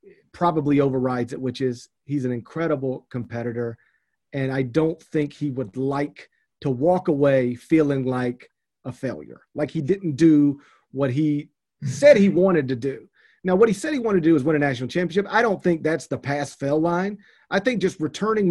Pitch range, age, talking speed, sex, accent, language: 135-175 Hz, 40-59, 190 wpm, male, American, English